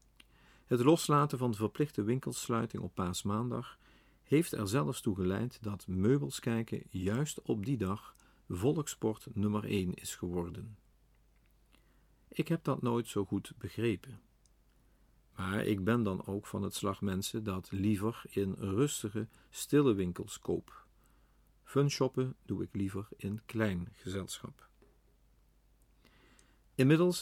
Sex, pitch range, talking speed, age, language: male, 95-125 Hz, 125 wpm, 50-69, Dutch